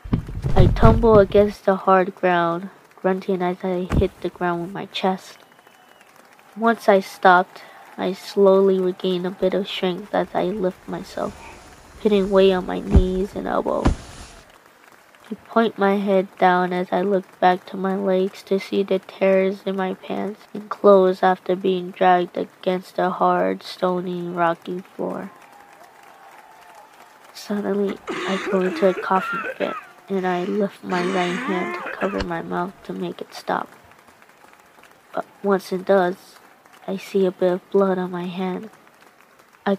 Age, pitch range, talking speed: 20-39, 180-200 Hz, 150 wpm